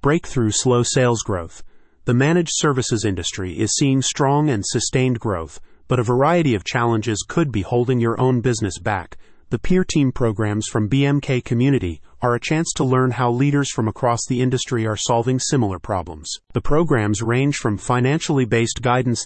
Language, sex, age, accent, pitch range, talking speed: English, male, 30-49, American, 110-135 Hz, 170 wpm